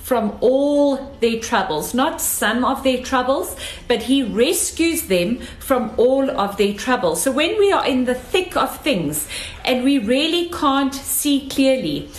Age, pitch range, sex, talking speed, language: 40-59, 225-285 Hz, female, 160 wpm, English